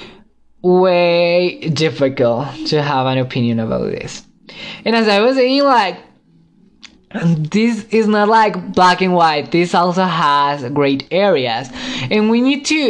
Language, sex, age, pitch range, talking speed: English, male, 20-39, 160-210 Hz, 140 wpm